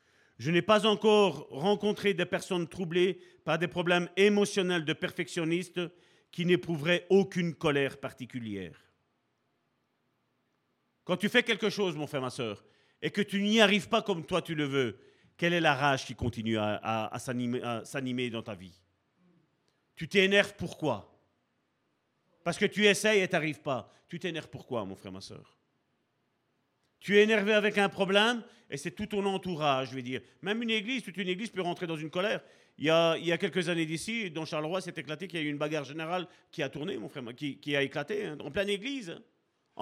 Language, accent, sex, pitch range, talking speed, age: French, French, male, 150-210 Hz, 200 wpm, 40-59